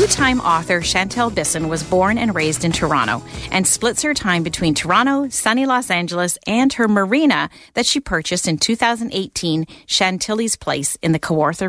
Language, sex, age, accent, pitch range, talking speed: English, female, 40-59, American, 165-240 Hz, 165 wpm